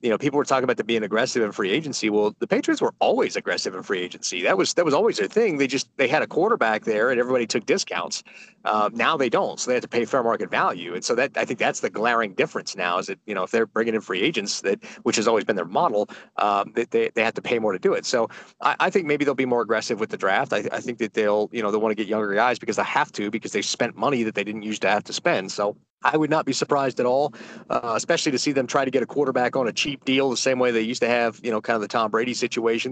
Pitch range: 110-135 Hz